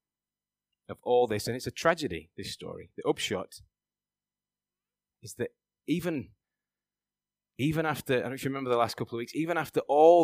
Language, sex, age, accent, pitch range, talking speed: English, male, 30-49, British, 110-140 Hz, 175 wpm